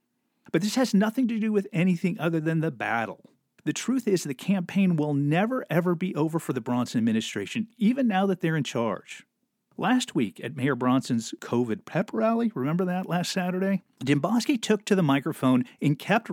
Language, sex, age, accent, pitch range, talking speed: English, male, 40-59, American, 130-200 Hz, 185 wpm